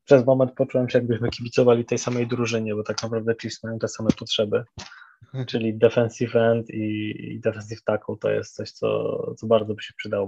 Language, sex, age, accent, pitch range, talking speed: Polish, male, 20-39, native, 105-120 Hz, 185 wpm